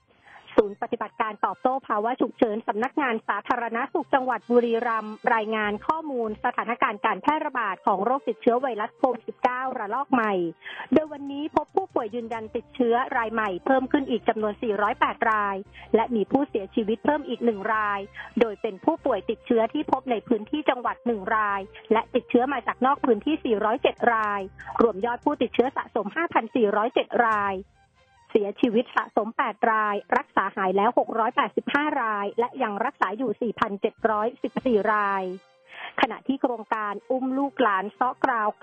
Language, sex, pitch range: Thai, female, 215-265 Hz